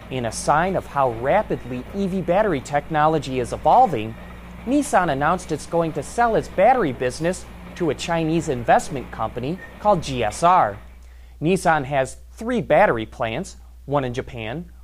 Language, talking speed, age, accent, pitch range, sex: English, 140 wpm, 30-49, American, 125-195 Hz, male